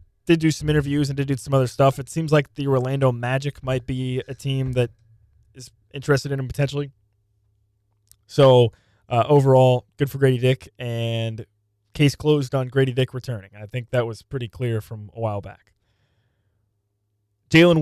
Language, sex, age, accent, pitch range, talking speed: English, male, 20-39, American, 110-140 Hz, 170 wpm